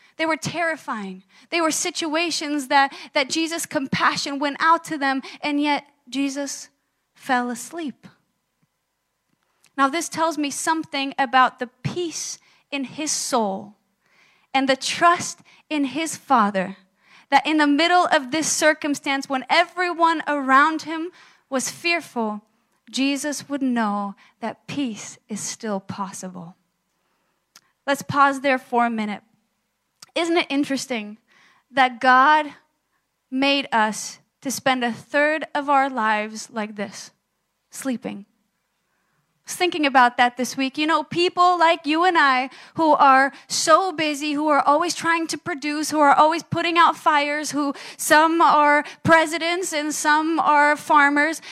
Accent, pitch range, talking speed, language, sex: American, 255-320 Hz, 135 wpm, English, female